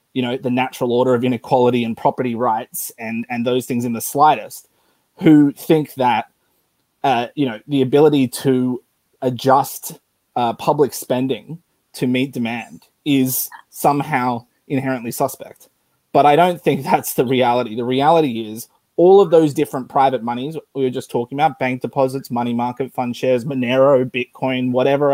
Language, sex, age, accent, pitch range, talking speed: English, male, 20-39, Australian, 125-160 Hz, 160 wpm